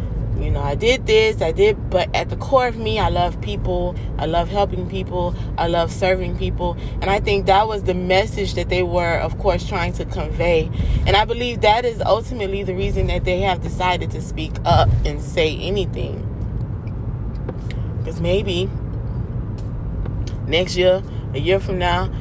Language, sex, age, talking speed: English, female, 20-39, 175 wpm